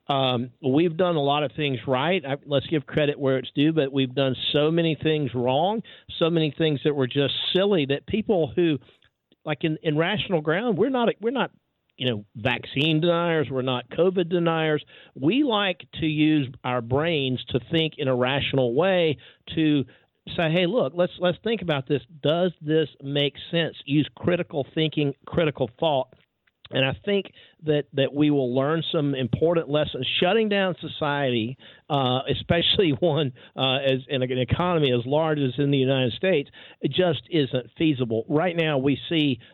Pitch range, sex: 135-165 Hz, male